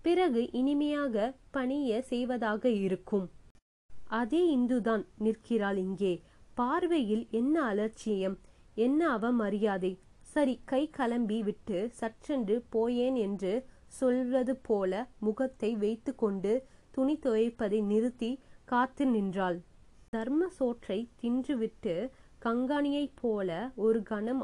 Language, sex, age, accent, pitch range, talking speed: Tamil, female, 20-39, native, 215-265 Hz, 95 wpm